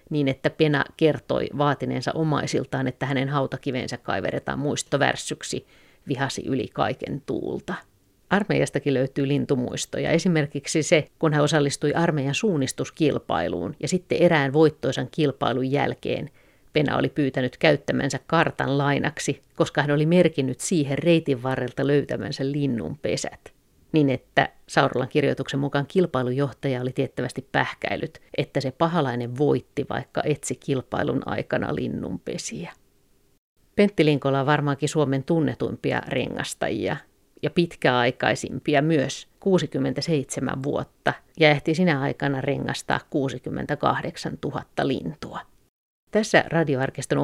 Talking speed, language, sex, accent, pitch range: 110 wpm, Finnish, female, native, 135-155 Hz